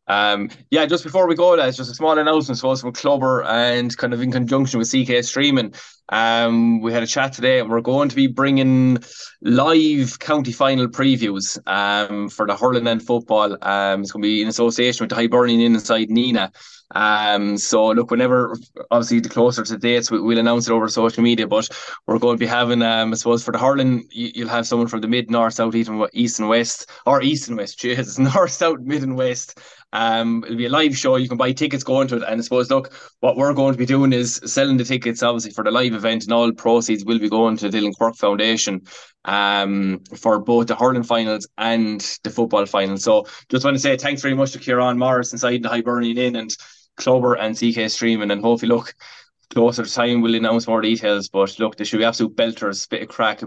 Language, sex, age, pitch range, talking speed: English, male, 20-39, 110-130 Hz, 230 wpm